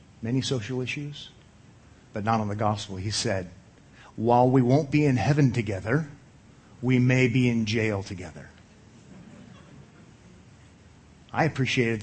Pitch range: 105-135 Hz